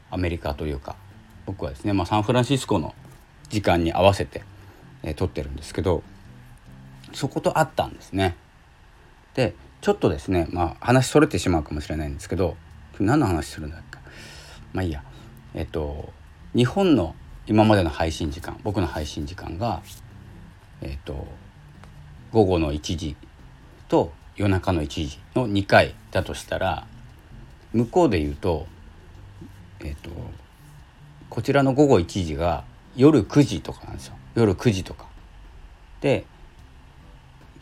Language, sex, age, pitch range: Japanese, male, 40-59, 75-110 Hz